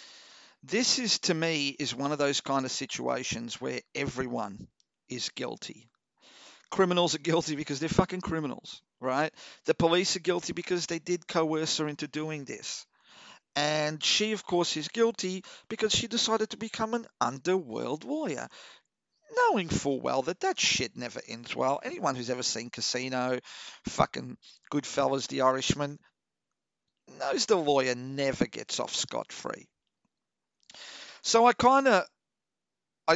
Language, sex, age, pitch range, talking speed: English, male, 50-69, 135-180 Hz, 140 wpm